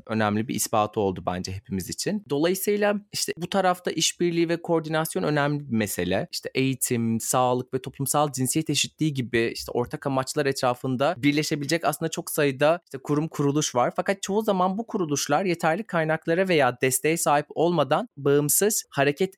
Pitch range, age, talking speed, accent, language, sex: 130-180 Hz, 30-49, 155 wpm, native, Turkish, male